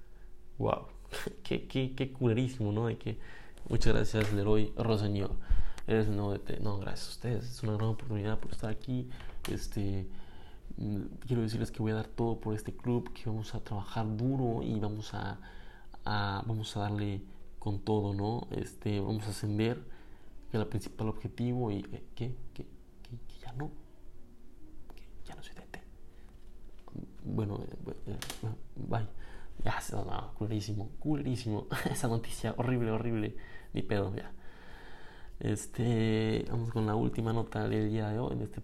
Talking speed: 160 wpm